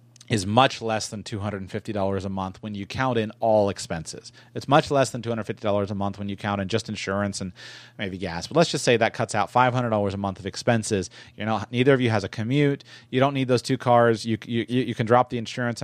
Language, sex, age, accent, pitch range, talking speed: English, male, 30-49, American, 100-125 Hz, 230 wpm